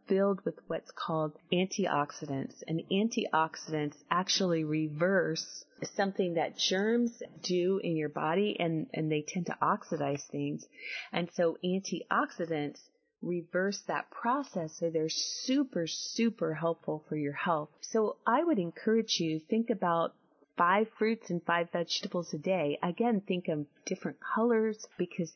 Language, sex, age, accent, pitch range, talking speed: English, female, 30-49, American, 155-195 Hz, 135 wpm